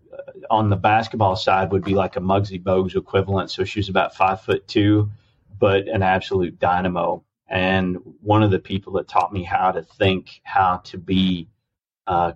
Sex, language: male, English